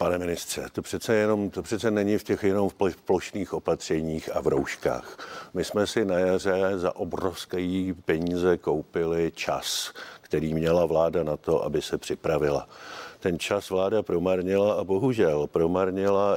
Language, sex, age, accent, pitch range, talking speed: Czech, male, 50-69, native, 85-95 Hz, 155 wpm